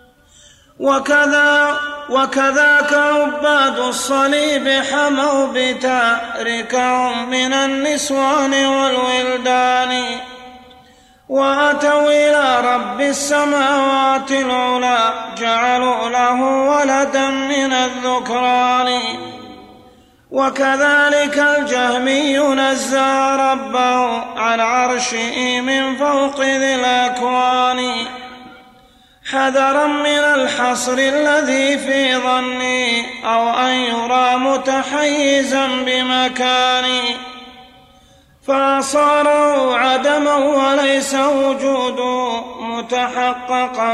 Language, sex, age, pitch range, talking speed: Arabic, male, 30-49, 250-275 Hz, 60 wpm